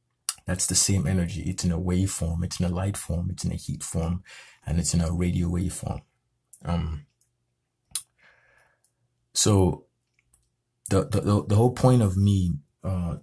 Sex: male